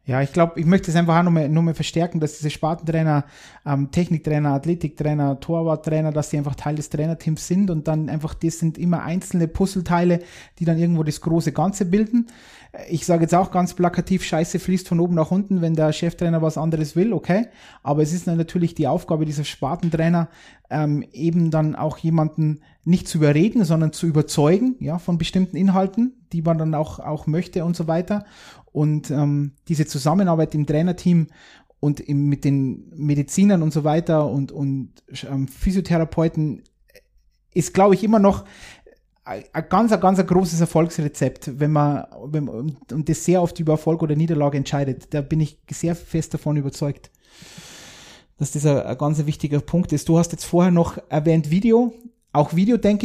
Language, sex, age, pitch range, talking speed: German, male, 30-49, 150-175 Hz, 180 wpm